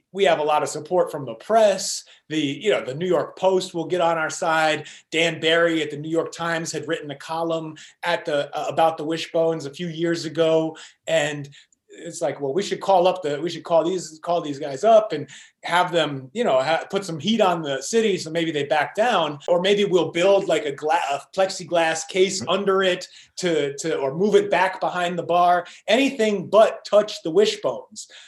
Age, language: 30-49, English